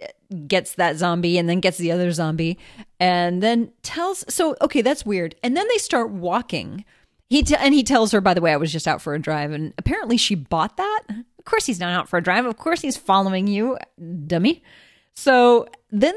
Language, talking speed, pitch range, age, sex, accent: English, 215 wpm, 170-245 Hz, 40-59, female, American